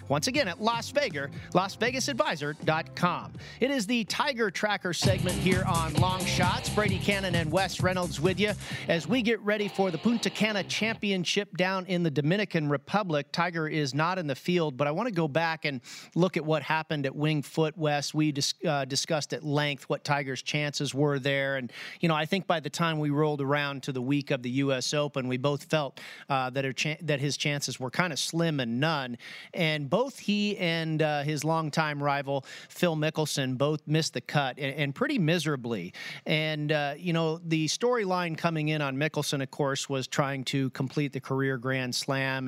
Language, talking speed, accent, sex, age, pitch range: English, 200 wpm, American, male, 40-59, 135-170 Hz